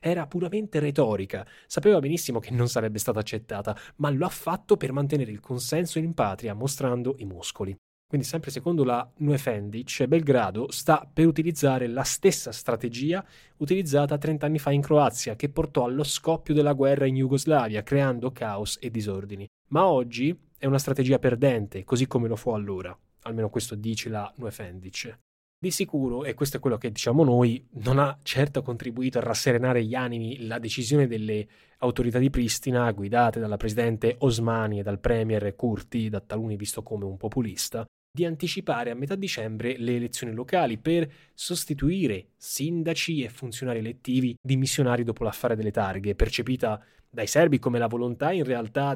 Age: 10-29